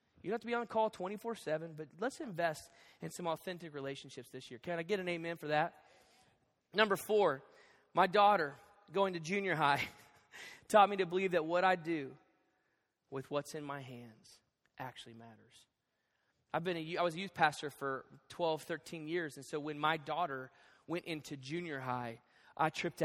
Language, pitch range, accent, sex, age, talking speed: English, 145-185 Hz, American, male, 20-39, 180 wpm